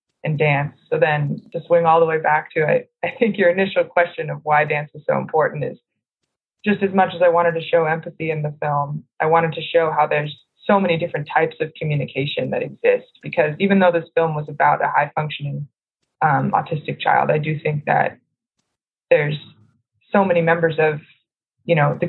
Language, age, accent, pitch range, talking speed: English, 20-39, American, 150-170 Hz, 205 wpm